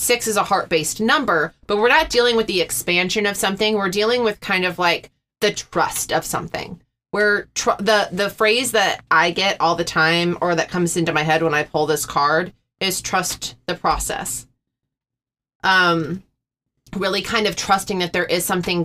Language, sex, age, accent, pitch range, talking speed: English, female, 20-39, American, 160-185 Hz, 190 wpm